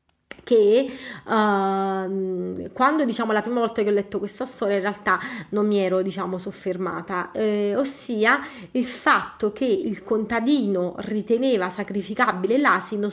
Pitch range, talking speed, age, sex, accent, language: 195-225 Hz, 135 wpm, 30-49, female, native, Italian